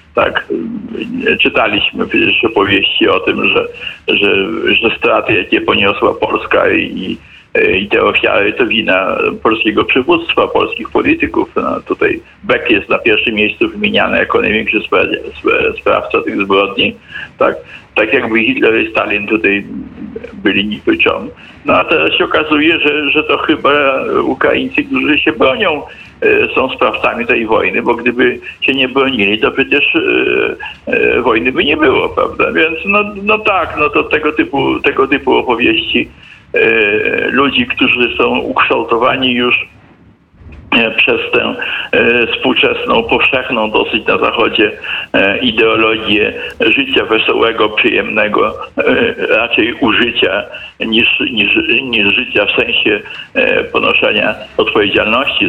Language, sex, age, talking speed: Polish, male, 60-79, 125 wpm